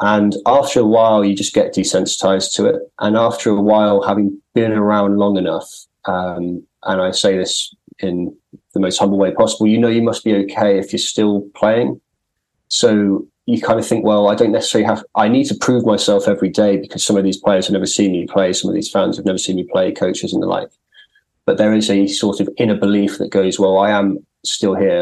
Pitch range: 95-110 Hz